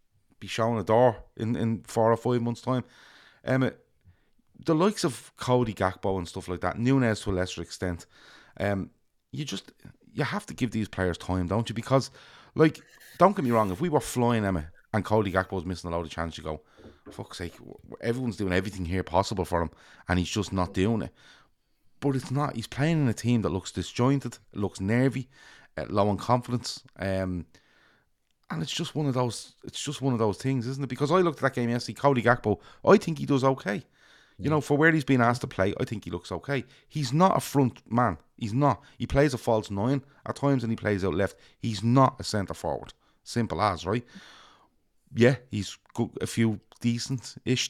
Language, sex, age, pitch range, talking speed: English, male, 30-49, 100-135 Hz, 210 wpm